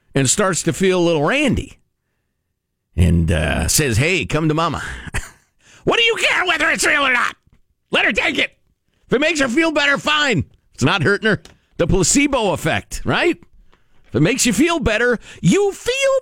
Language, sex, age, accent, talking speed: English, male, 50-69, American, 185 wpm